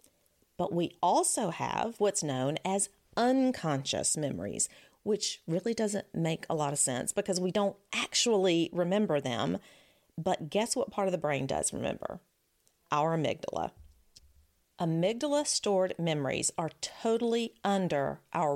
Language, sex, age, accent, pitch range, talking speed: English, female, 40-59, American, 155-210 Hz, 135 wpm